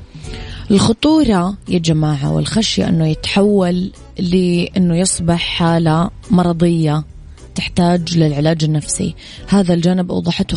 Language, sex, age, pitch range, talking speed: Arabic, female, 20-39, 160-185 Hz, 90 wpm